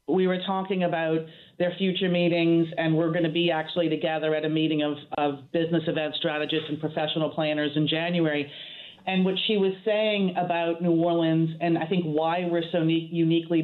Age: 40-59